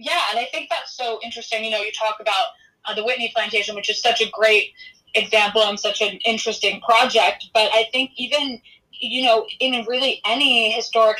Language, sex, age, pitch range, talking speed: English, female, 20-39, 210-250 Hz, 200 wpm